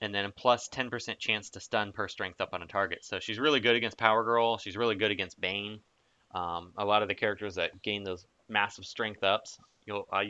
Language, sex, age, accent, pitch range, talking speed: English, male, 20-39, American, 100-120 Hz, 225 wpm